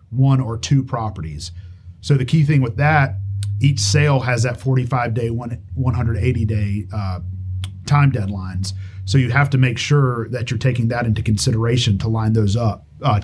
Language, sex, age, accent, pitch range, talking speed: English, male, 40-59, American, 105-135 Hz, 170 wpm